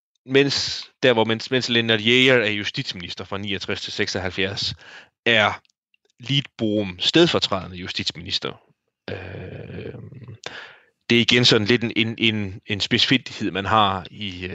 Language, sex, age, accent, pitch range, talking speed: Danish, male, 30-49, native, 95-120 Hz, 115 wpm